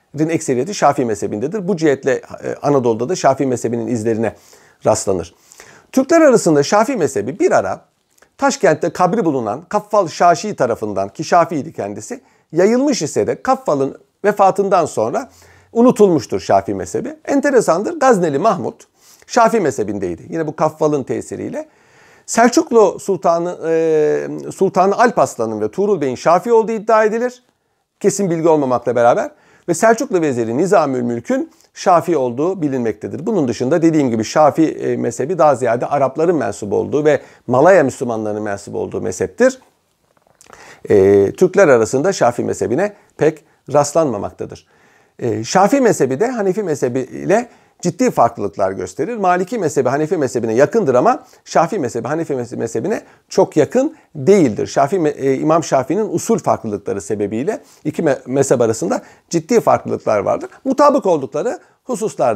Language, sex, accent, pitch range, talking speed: Turkish, male, native, 145-230 Hz, 125 wpm